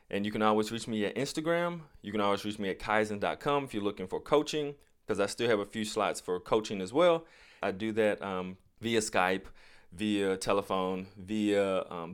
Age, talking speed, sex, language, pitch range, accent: 30-49, 205 wpm, male, English, 95-110 Hz, American